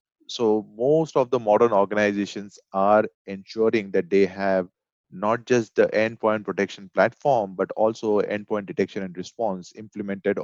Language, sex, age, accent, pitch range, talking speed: English, male, 30-49, Indian, 100-125 Hz, 140 wpm